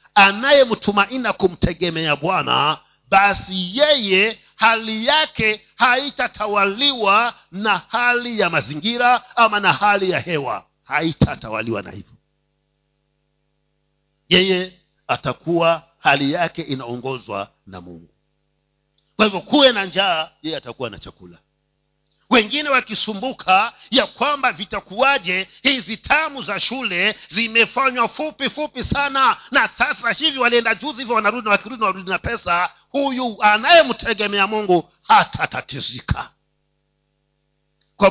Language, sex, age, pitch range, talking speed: Swahili, male, 50-69, 185-260 Hz, 105 wpm